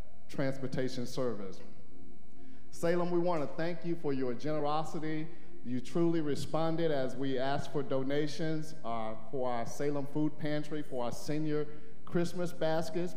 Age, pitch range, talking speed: 50-69, 135-160 Hz, 135 wpm